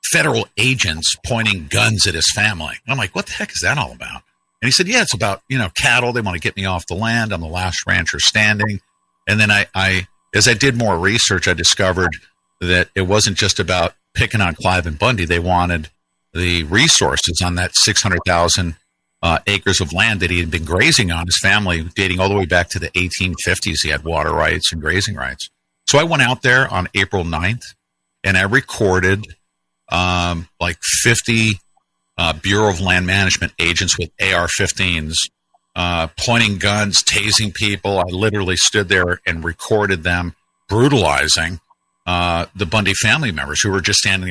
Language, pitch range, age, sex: English, 85-105 Hz, 50-69, male